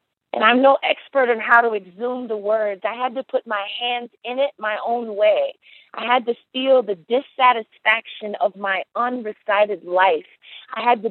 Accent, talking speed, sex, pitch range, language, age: American, 185 wpm, female, 205-255 Hz, English, 40-59